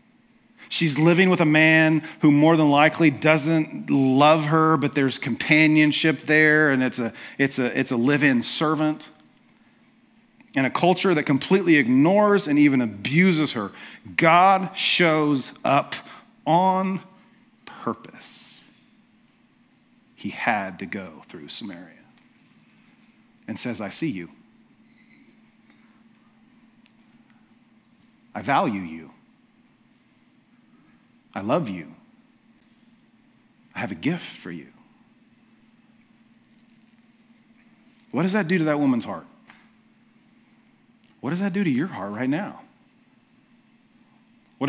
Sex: male